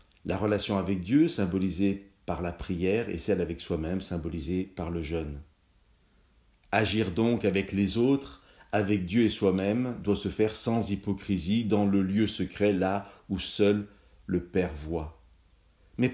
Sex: male